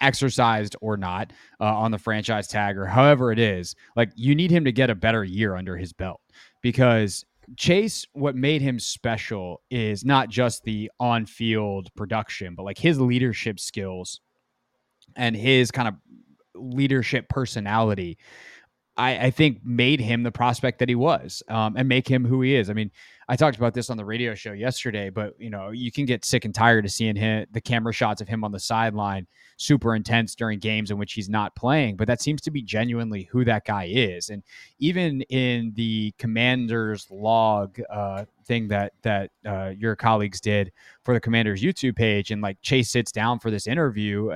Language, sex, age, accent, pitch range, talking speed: English, male, 20-39, American, 105-125 Hz, 190 wpm